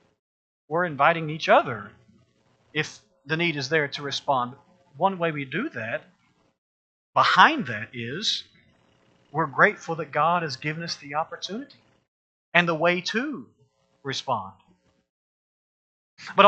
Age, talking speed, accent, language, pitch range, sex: 40-59, 125 wpm, American, English, 130-175 Hz, male